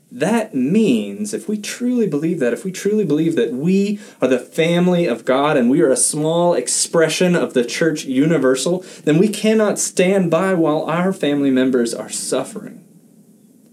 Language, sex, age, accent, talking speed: English, male, 30-49, American, 170 wpm